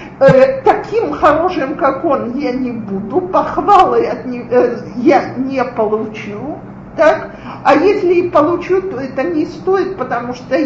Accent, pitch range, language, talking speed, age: native, 245-365 Hz, Russian, 145 wpm, 40-59